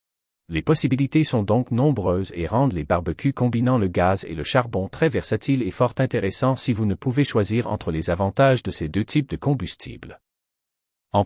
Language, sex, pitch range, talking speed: French, male, 90-135 Hz, 185 wpm